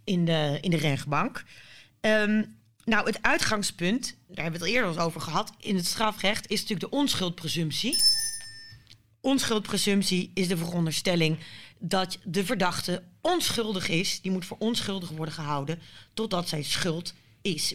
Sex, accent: female, Dutch